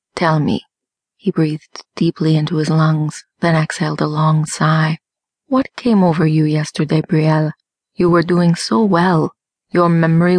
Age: 30-49